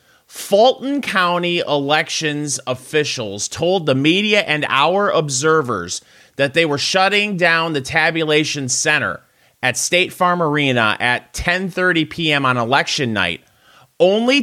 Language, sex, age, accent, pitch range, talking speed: English, male, 30-49, American, 125-180 Hz, 120 wpm